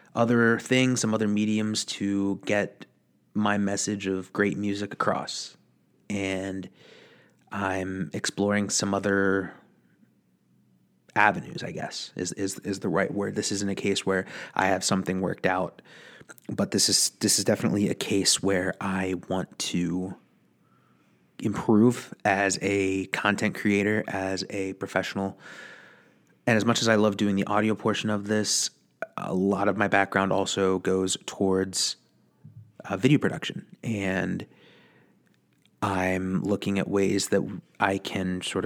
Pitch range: 95-105 Hz